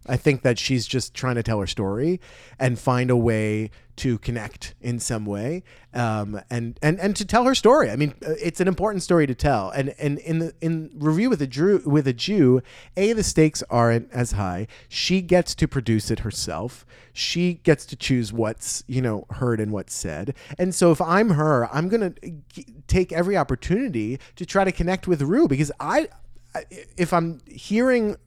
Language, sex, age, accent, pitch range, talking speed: English, male, 30-49, American, 120-170 Hz, 195 wpm